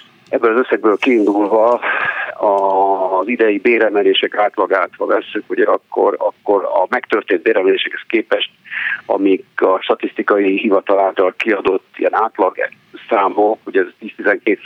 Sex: male